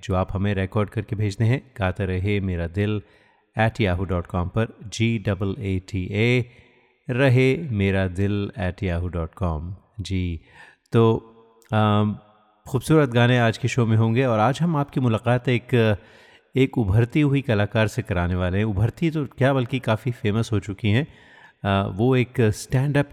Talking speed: 155 wpm